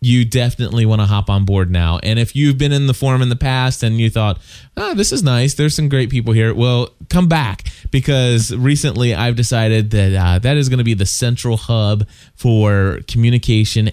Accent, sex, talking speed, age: American, male, 210 wpm, 20-39